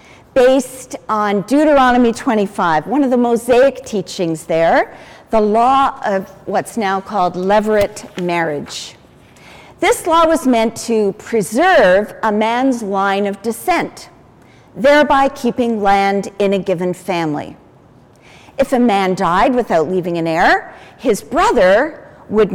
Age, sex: 50-69, female